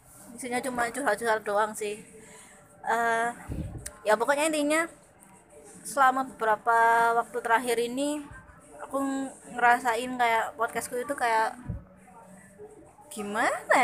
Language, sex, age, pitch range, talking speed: Indonesian, female, 20-39, 210-260 Hz, 90 wpm